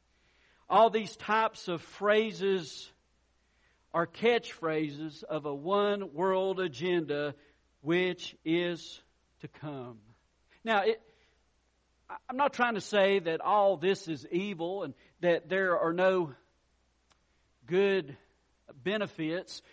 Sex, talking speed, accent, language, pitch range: male, 105 wpm, American, English, 145-190 Hz